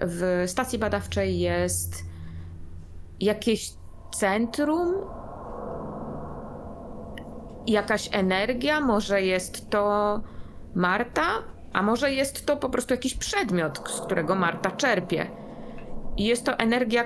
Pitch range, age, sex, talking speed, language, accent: 195-260 Hz, 20-39, female, 100 wpm, Polish, native